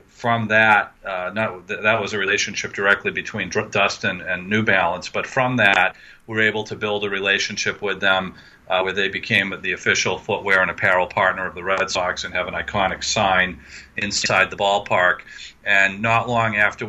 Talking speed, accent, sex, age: 185 wpm, American, male, 40-59